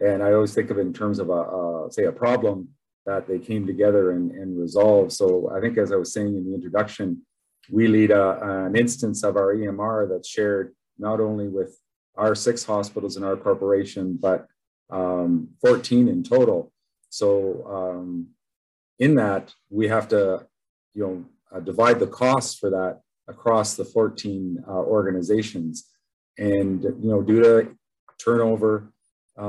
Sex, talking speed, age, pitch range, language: male, 165 wpm, 40-59, 95-115 Hz, English